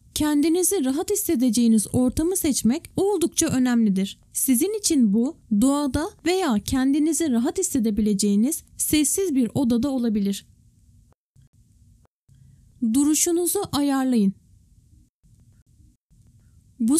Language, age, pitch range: Turkish, 10-29, 230-315 Hz